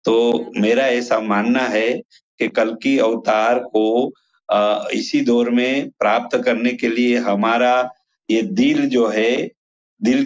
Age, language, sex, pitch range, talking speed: 50-69, Urdu, male, 120-155 Hz, 135 wpm